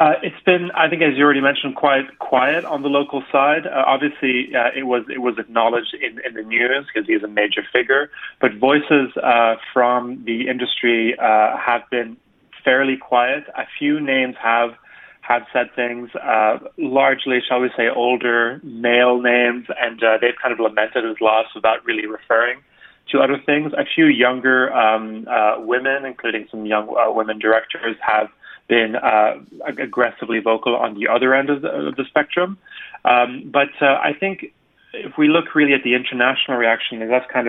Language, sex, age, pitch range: Korean, male, 30-49, 115-140 Hz